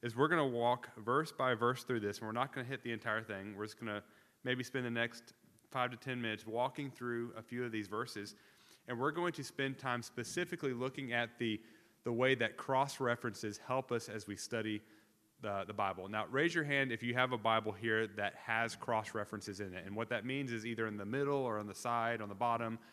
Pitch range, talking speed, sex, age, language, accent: 110-130 Hz, 240 wpm, male, 30-49, English, American